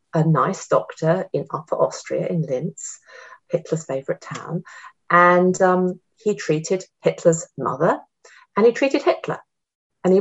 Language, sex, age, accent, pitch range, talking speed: English, female, 40-59, British, 150-185 Hz, 135 wpm